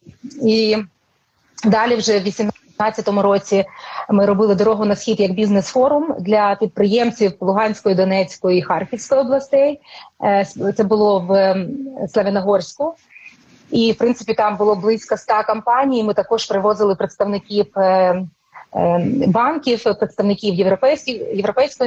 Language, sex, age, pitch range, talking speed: Ukrainian, female, 30-49, 190-225 Hz, 105 wpm